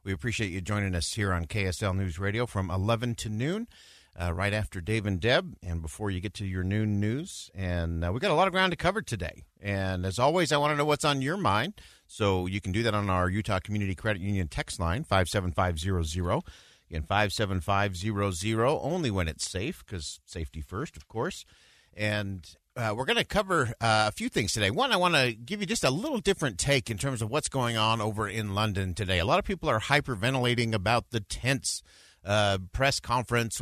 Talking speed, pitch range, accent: 210 wpm, 95-120 Hz, American